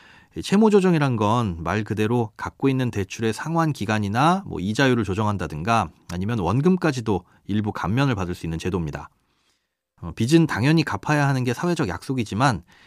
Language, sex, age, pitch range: Korean, male, 30-49, 105-145 Hz